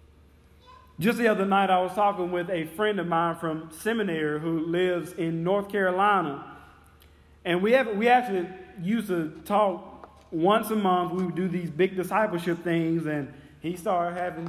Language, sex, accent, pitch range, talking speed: English, male, American, 165-205 Hz, 170 wpm